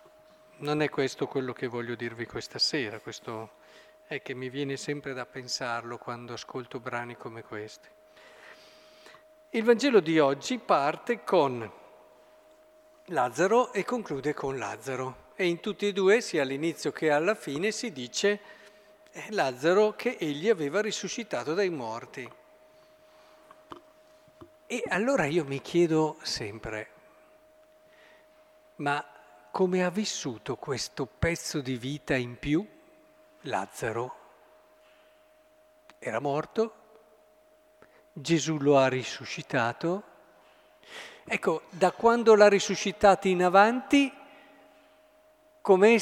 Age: 50-69